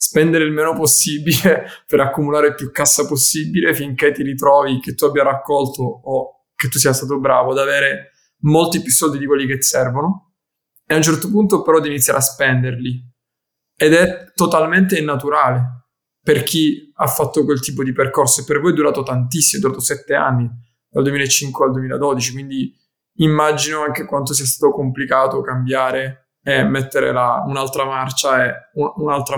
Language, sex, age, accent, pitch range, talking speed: Italian, male, 20-39, native, 135-155 Hz, 170 wpm